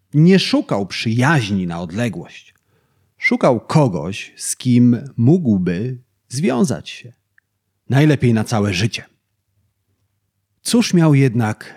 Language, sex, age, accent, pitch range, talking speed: Polish, male, 40-59, native, 105-170 Hz, 95 wpm